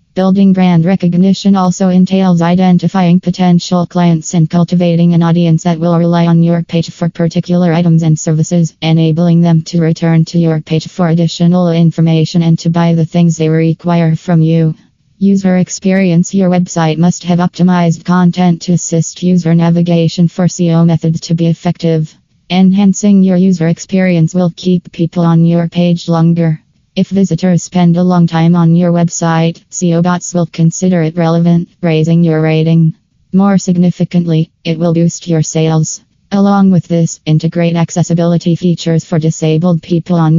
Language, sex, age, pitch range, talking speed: English, female, 20-39, 165-180 Hz, 155 wpm